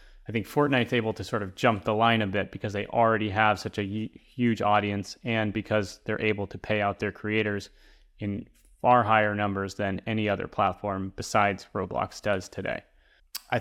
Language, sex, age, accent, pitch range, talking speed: English, male, 30-49, American, 105-115 Hz, 185 wpm